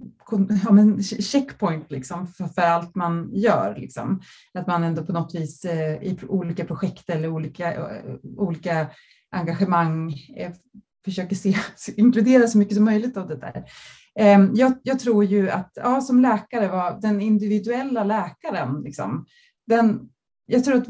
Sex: female